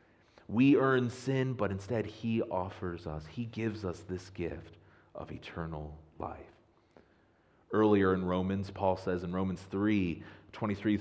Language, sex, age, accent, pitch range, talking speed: English, male, 30-49, American, 90-130 Hz, 135 wpm